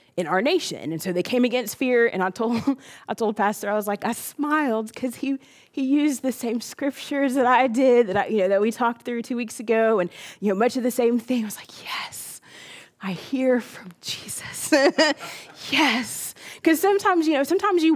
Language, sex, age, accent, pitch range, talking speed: English, female, 20-39, American, 195-255 Hz, 210 wpm